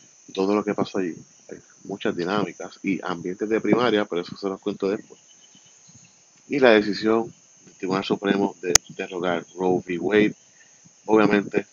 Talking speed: 155 wpm